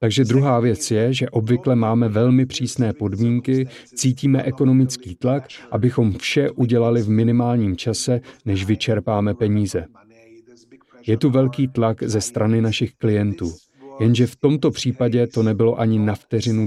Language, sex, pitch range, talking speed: Czech, male, 110-130 Hz, 140 wpm